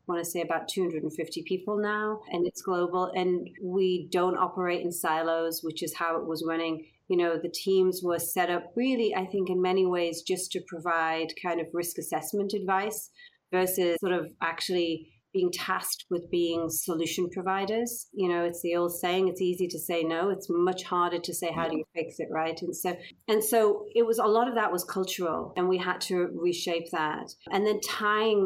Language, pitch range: English, 170-190 Hz